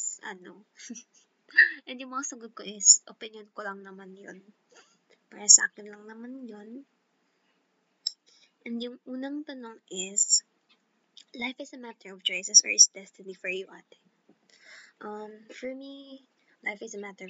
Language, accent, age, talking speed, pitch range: Filipino, native, 20-39, 140 wpm, 195-235 Hz